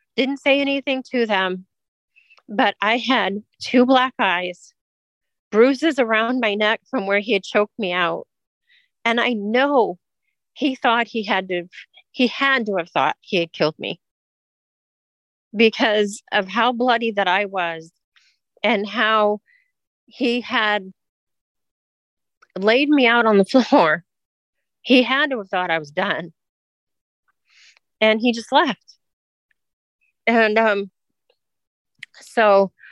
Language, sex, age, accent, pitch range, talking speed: English, female, 40-59, American, 190-240 Hz, 130 wpm